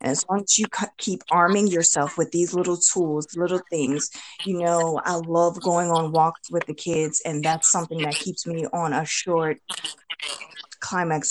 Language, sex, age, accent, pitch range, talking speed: English, female, 20-39, American, 150-175 Hz, 175 wpm